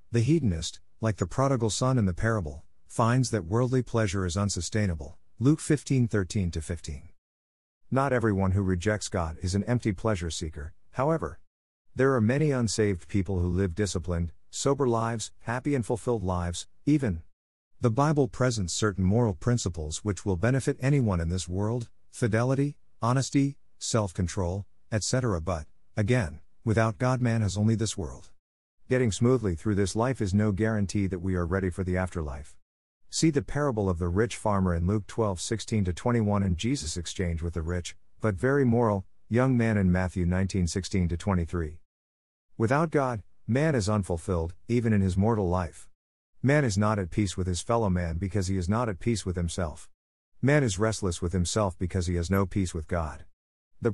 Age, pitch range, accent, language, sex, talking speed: 50-69, 90-115 Hz, American, English, male, 170 wpm